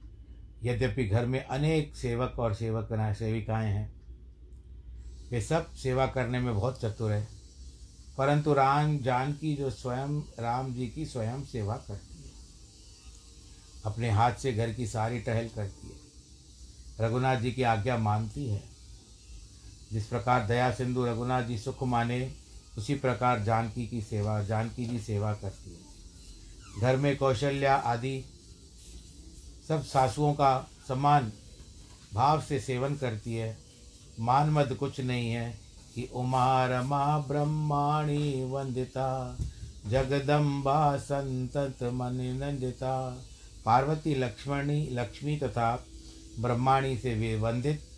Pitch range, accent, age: 105-135 Hz, native, 60-79